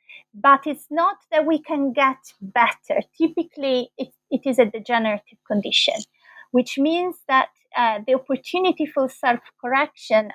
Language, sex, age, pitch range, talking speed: English, female, 30-49, 225-285 Hz, 135 wpm